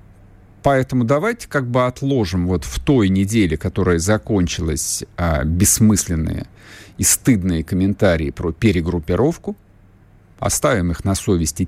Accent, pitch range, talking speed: native, 95-125 Hz, 110 wpm